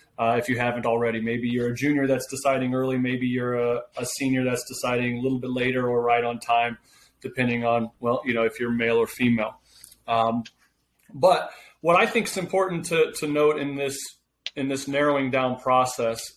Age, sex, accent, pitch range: 30-49, male, American, 120-135 Hz